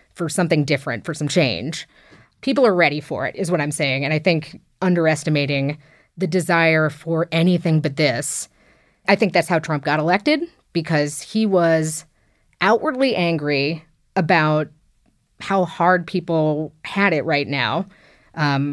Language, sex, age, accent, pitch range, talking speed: English, female, 30-49, American, 155-195 Hz, 145 wpm